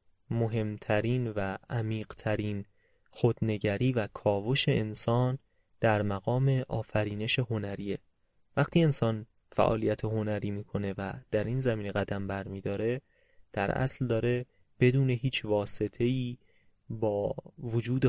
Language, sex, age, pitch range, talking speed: Persian, male, 20-39, 100-120 Hz, 105 wpm